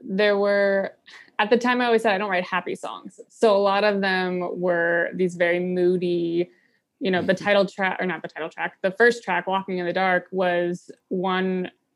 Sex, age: female, 20-39